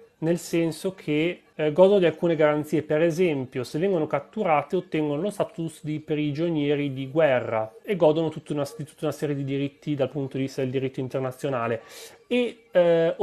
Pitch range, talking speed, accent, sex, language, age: 130-165 Hz, 170 wpm, native, male, Italian, 30-49